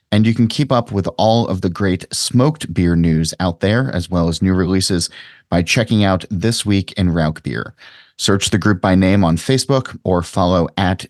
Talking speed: 205 wpm